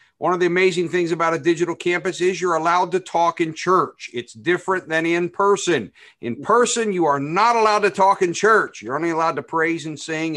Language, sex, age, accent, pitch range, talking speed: English, male, 50-69, American, 130-170 Hz, 220 wpm